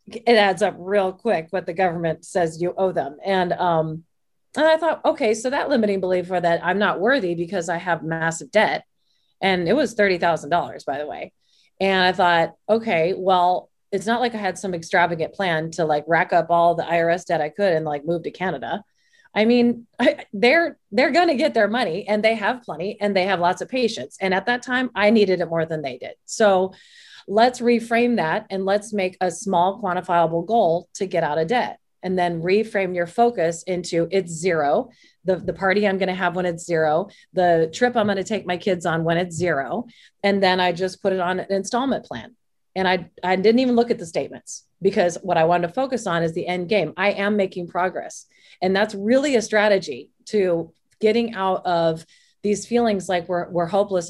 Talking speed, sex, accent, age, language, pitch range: 215 wpm, female, American, 30-49, English, 175-215 Hz